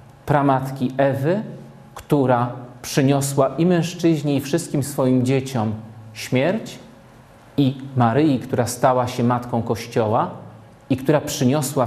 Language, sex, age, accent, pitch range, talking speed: Polish, male, 40-59, native, 120-145 Hz, 105 wpm